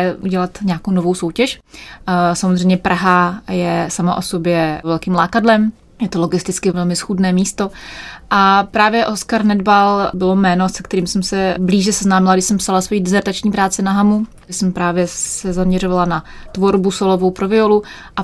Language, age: Czech, 20-39